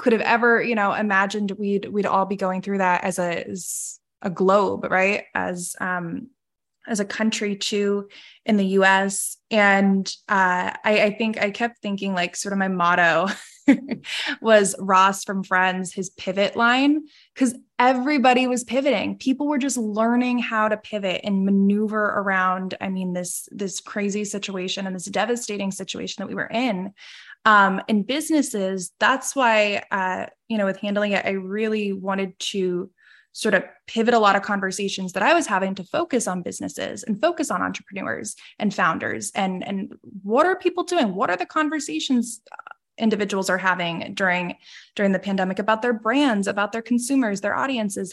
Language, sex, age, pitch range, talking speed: English, female, 20-39, 195-235 Hz, 170 wpm